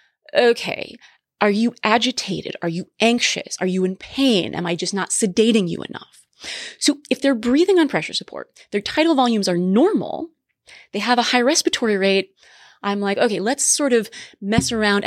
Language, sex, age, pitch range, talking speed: English, female, 20-39, 180-245 Hz, 175 wpm